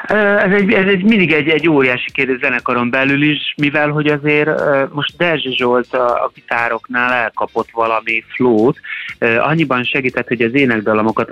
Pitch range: 110-150 Hz